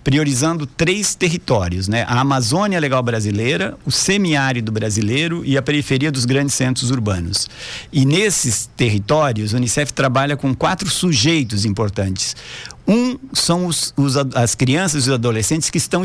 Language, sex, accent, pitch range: Portuguese, male, Brazilian, 120-165 Hz